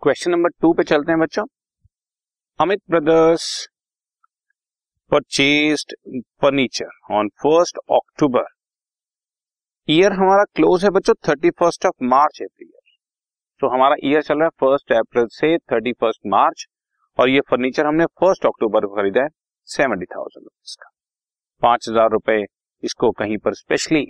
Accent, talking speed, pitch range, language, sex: native, 110 wpm, 110-180 Hz, Hindi, male